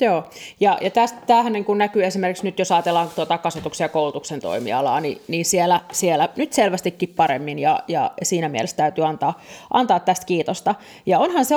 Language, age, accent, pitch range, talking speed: Finnish, 30-49, native, 170-210 Hz, 165 wpm